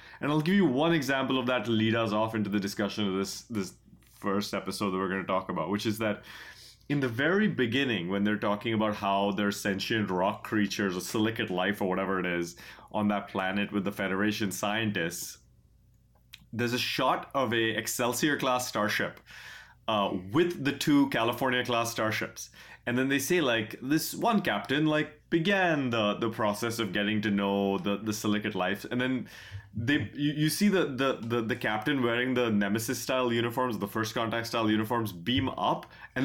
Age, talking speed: 30-49, 190 wpm